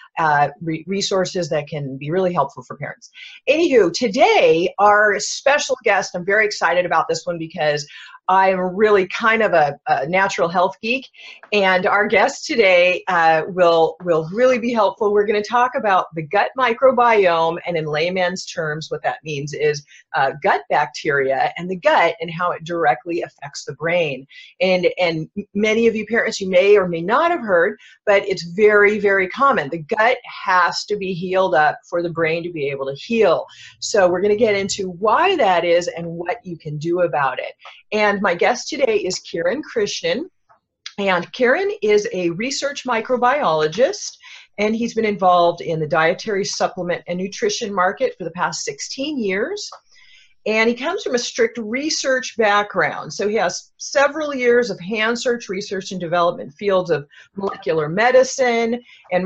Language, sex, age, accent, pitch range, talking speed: English, female, 40-59, American, 170-235 Hz, 175 wpm